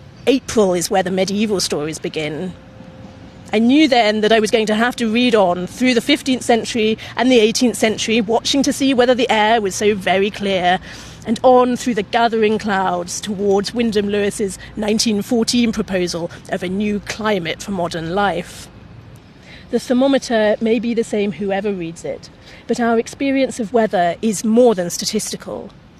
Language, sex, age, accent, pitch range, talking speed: English, female, 40-59, British, 195-235 Hz, 170 wpm